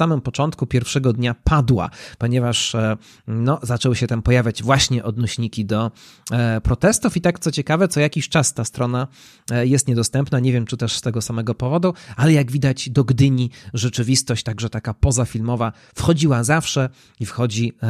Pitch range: 115-145 Hz